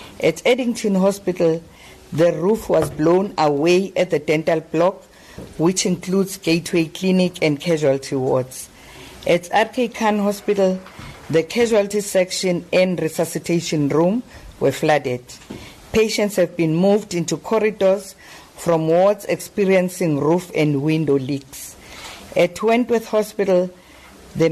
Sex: female